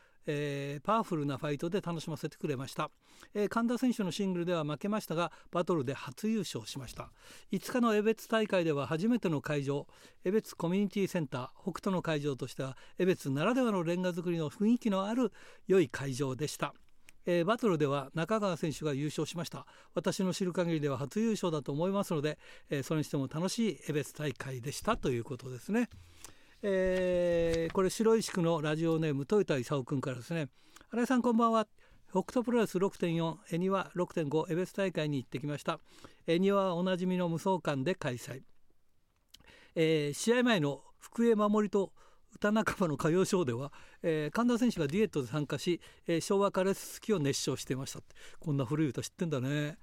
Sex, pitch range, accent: male, 150-200 Hz, native